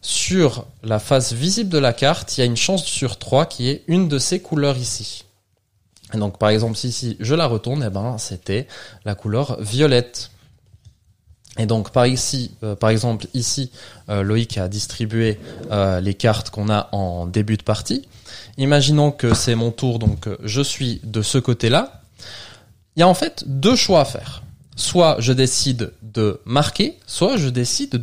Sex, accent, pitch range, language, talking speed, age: male, French, 105-135 Hz, French, 185 wpm, 20-39